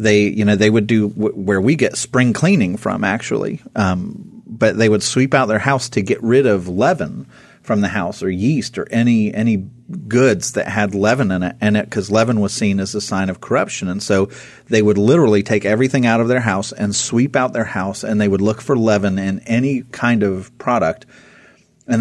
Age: 40-59